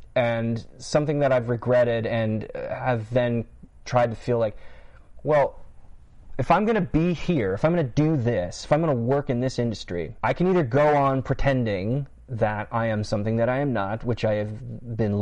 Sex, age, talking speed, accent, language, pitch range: male, 30-49, 190 wpm, American, English, 105-125 Hz